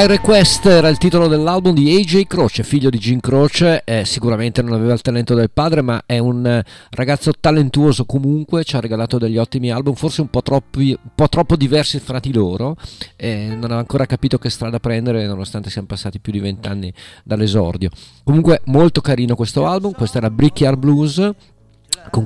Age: 40-59